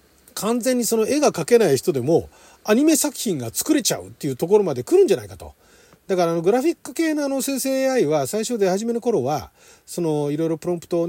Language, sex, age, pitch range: Japanese, male, 40-59, 145-245 Hz